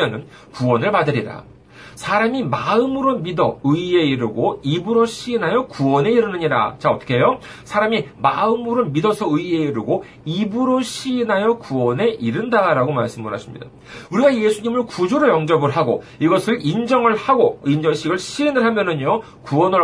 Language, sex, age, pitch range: Korean, male, 40-59, 140-215 Hz